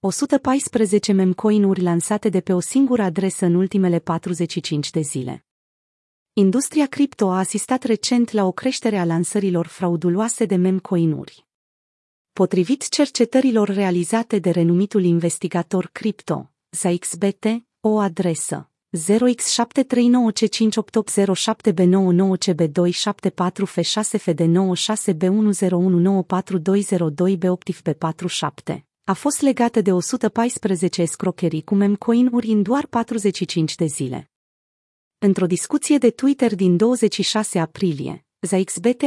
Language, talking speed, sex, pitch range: Romanian, 115 wpm, female, 180-225 Hz